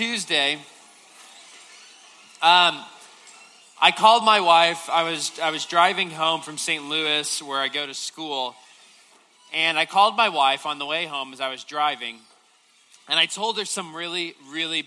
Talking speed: 160 wpm